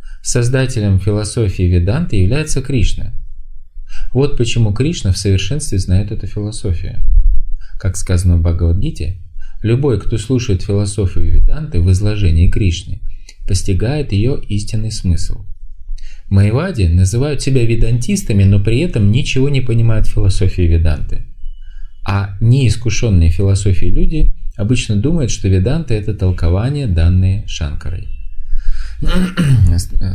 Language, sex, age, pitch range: Russian, male, 20-39, 85-110 Hz